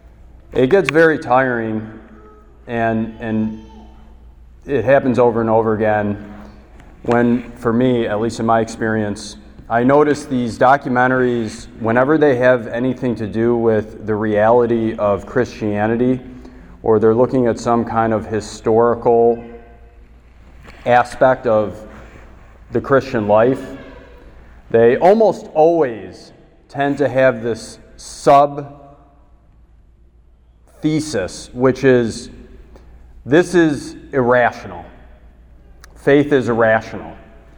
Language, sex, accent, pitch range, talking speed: English, male, American, 105-135 Hz, 105 wpm